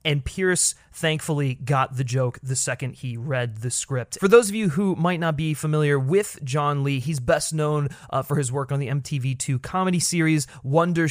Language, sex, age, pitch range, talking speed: English, male, 30-49, 130-160 Hz, 200 wpm